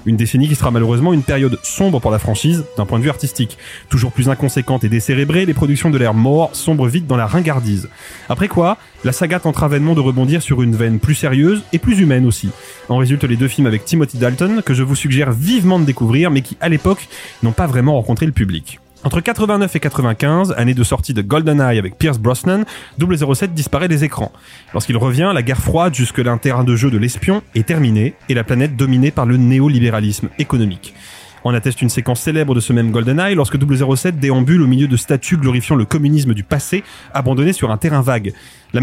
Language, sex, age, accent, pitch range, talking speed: French, male, 30-49, French, 120-160 Hz, 215 wpm